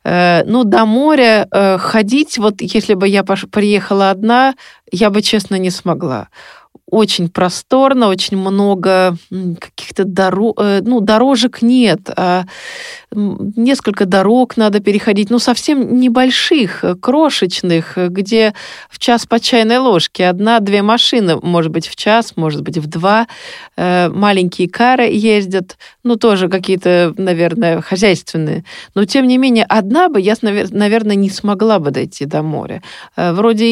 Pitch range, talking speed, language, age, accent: 185-225 Hz, 130 wpm, Russian, 30-49, native